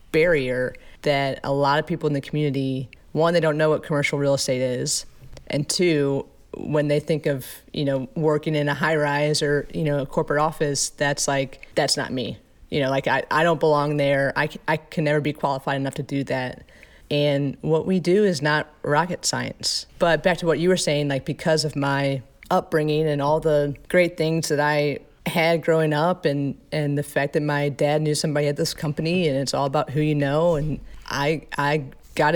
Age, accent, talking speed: 30-49, American, 210 wpm